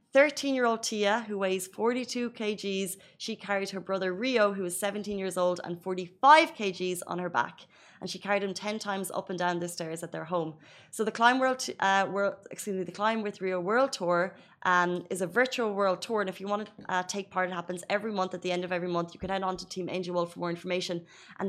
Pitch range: 175-205 Hz